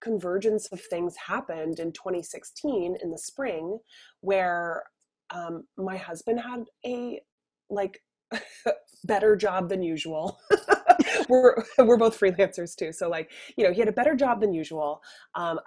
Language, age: English, 20-39